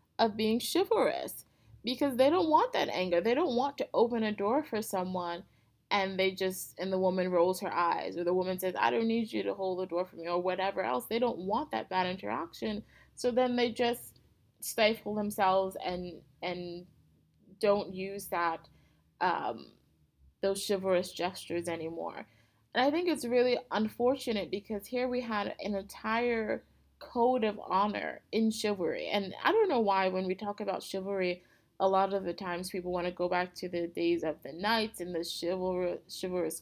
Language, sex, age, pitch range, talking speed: English, female, 20-39, 180-225 Hz, 185 wpm